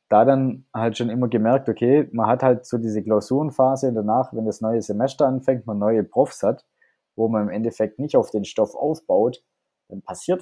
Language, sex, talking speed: German, male, 200 wpm